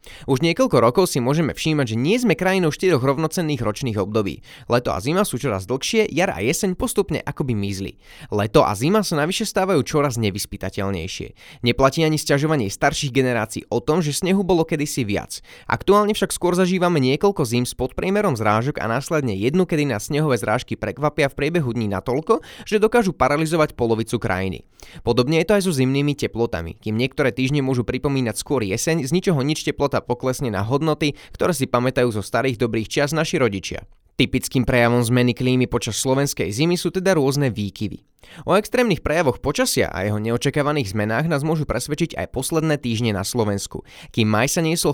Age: 20-39